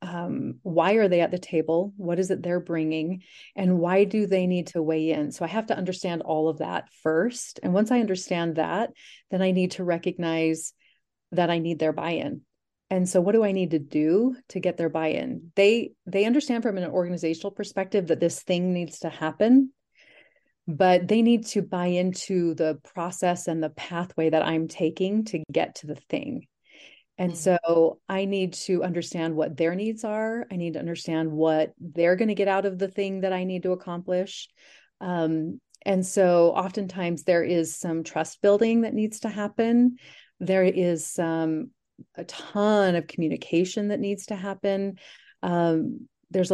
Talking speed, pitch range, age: 185 wpm, 170-200 Hz, 30-49